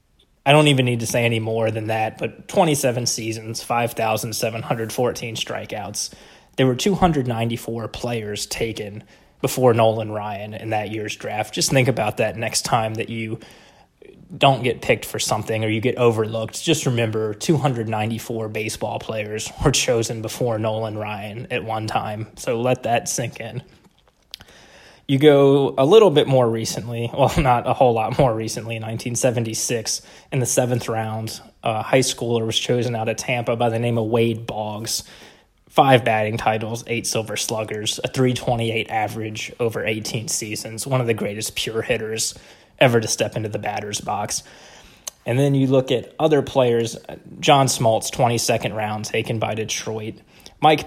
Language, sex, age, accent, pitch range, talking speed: English, male, 20-39, American, 110-125 Hz, 160 wpm